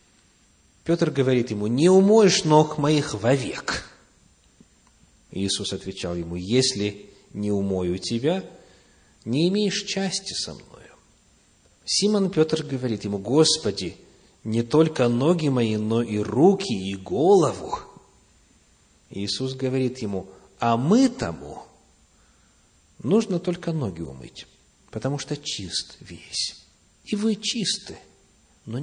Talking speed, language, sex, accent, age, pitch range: 110 wpm, Russian, male, native, 40-59, 105-165 Hz